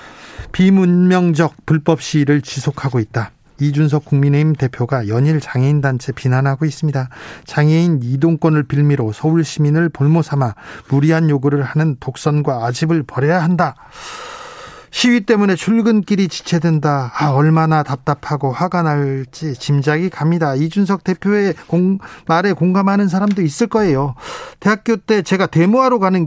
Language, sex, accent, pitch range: Korean, male, native, 135-180 Hz